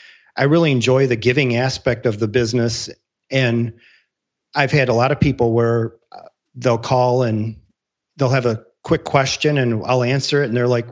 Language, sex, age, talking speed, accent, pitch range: English, male, 40-59, 175 wpm, American, 120-150 Hz